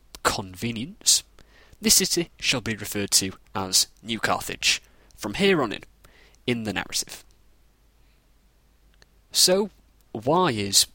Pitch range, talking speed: 95-135 Hz, 110 wpm